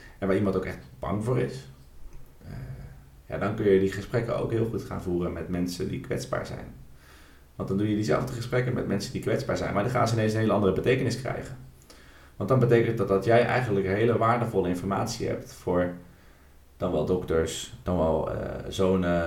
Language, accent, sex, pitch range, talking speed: Dutch, Dutch, male, 85-115 Hz, 200 wpm